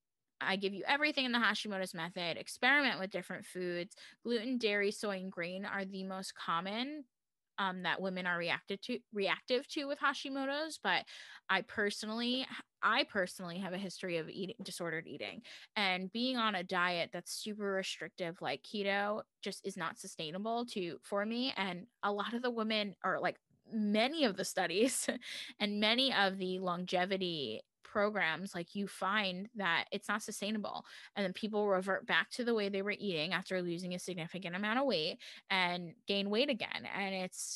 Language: English